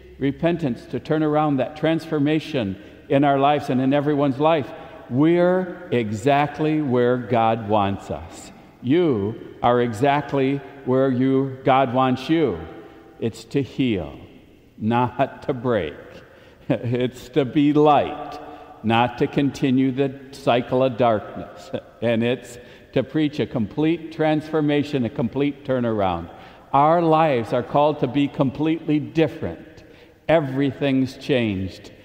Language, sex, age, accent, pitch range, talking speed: English, male, 60-79, American, 115-150 Hz, 120 wpm